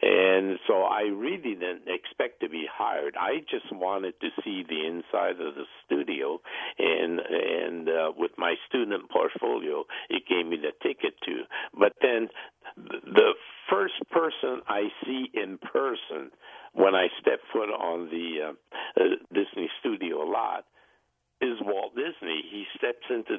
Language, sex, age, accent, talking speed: English, male, 60-79, American, 150 wpm